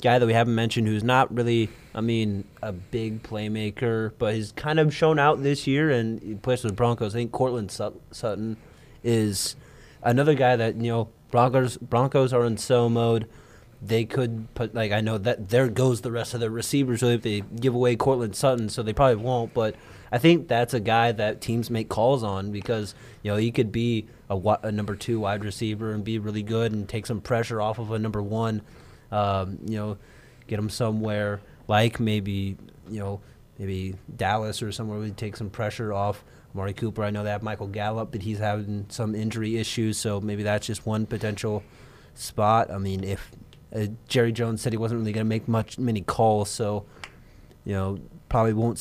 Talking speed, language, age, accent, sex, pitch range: 200 wpm, English, 20-39, American, male, 105-120 Hz